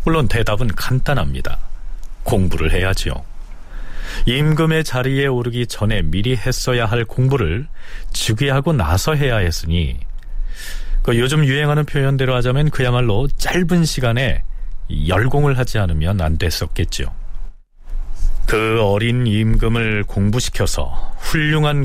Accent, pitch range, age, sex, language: native, 85-135 Hz, 40-59, male, Korean